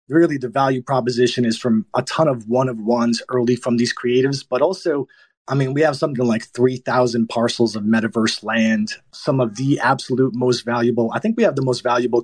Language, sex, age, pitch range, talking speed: English, male, 30-49, 120-150 Hz, 200 wpm